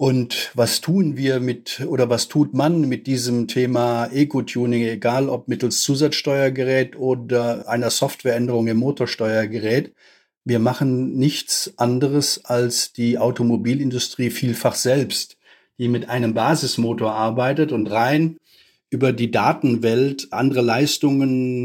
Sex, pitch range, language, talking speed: male, 120-150 Hz, German, 120 wpm